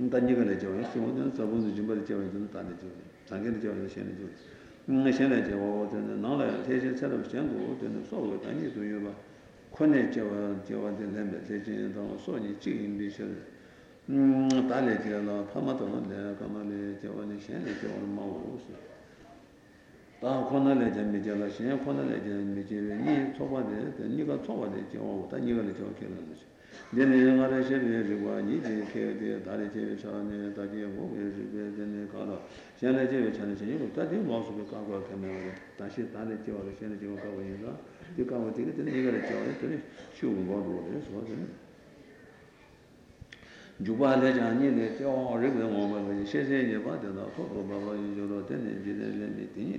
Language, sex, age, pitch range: Italian, male, 60-79, 100-125 Hz